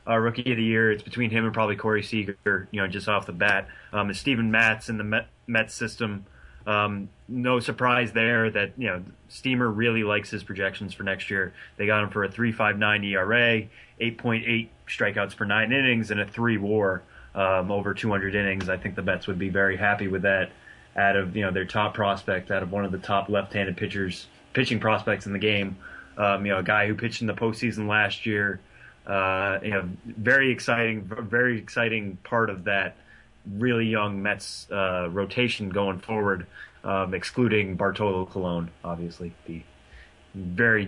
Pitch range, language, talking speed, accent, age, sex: 95-115 Hz, English, 180 wpm, American, 20-39, male